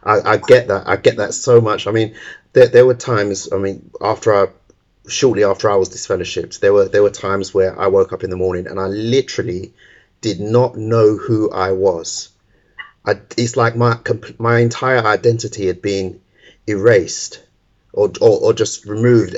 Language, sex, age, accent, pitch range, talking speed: English, male, 30-49, British, 100-130 Hz, 185 wpm